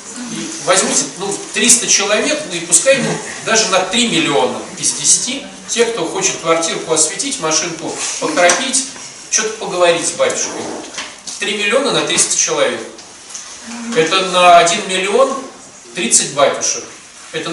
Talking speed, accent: 125 wpm, native